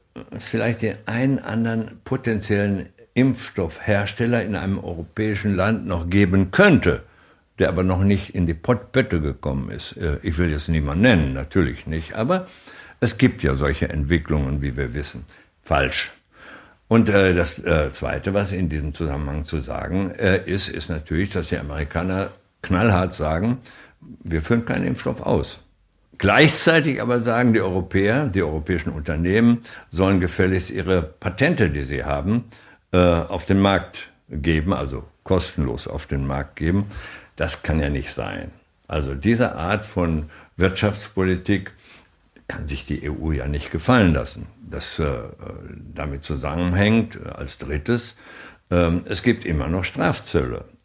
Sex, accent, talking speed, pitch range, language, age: male, German, 135 wpm, 80-105 Hz, German, 60-79